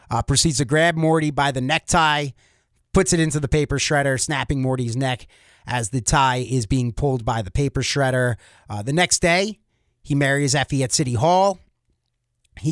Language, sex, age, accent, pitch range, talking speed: English, male, 30-49, American, 125-170 Hz, 180 wpm